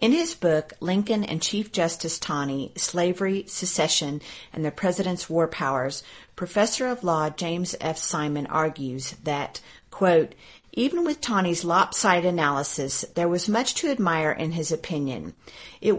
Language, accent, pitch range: English, American, 155-205 Hz